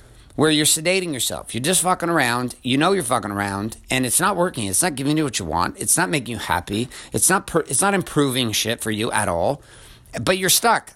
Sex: male